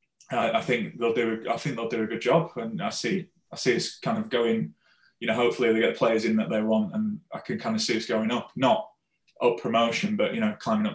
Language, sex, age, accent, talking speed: English, male, 20-39, British, 260 wpm